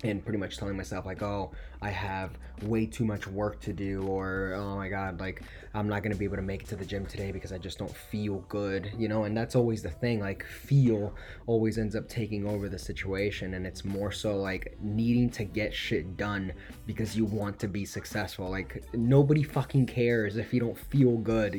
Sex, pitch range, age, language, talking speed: male, 95-115 Hz, 20-39, English, 220 wpm